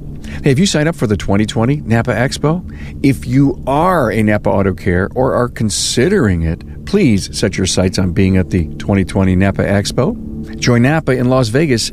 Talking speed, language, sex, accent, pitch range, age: 180 wpm, English, male, American, 95-130 Hz, 50-69